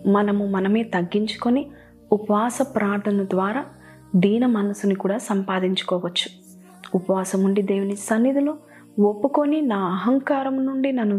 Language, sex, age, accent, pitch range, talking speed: Telugu, female, 20-39, native, 195-245 Hz, 95 wpm